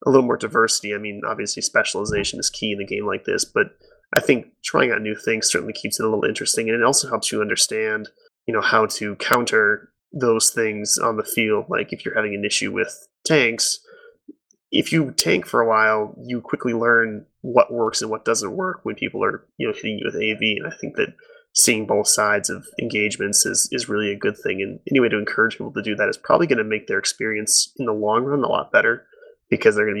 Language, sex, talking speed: English, male, 235 wpm